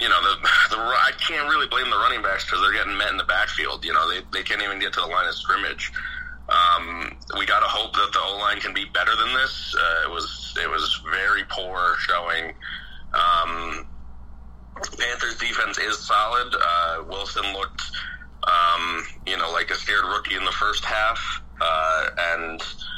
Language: English